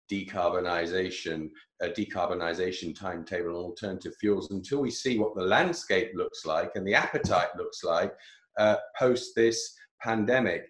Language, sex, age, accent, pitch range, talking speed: English, male, 40-59, British, 95-125 Hz, 135 wpm